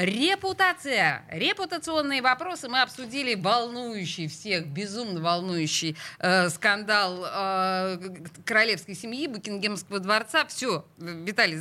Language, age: Russian, 20-39